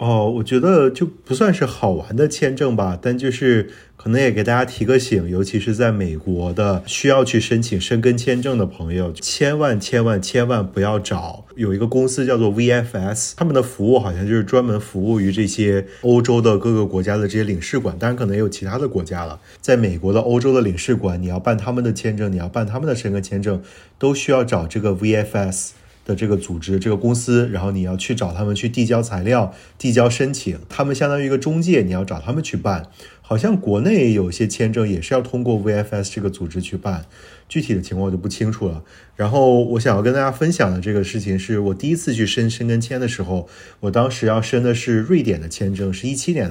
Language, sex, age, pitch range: Chinese, male, 30-49, 95-125 Hz